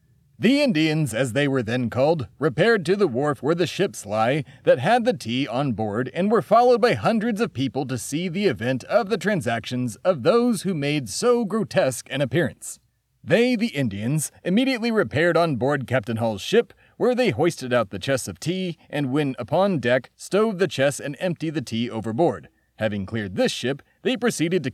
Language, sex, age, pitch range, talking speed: English, male, 30-49, 125-190 Hz, 195 wpm